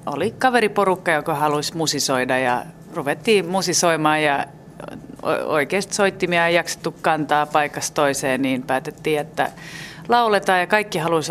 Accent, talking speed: native, 120 wpm